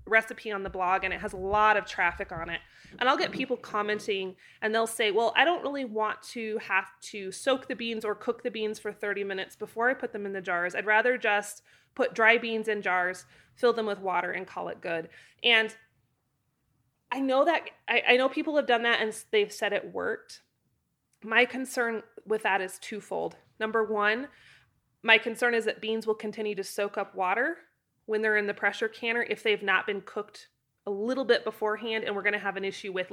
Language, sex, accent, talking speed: English, female, American, 215 wpm